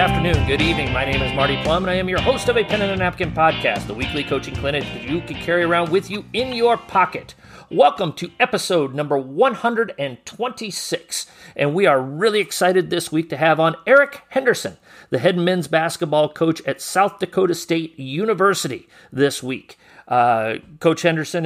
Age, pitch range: 40-59, 145-180 Hz